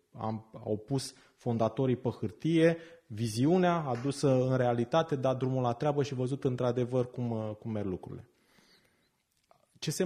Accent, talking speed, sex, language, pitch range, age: native, 135 wpm, male, Romanian, 115-160 Hz, 30-49